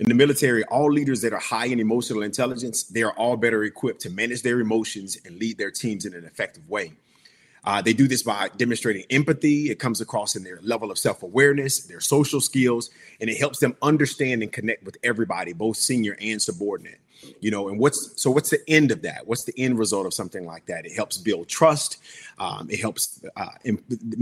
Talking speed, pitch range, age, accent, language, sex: 210 wpm, 110-130 Hz, 30-49, American, English, male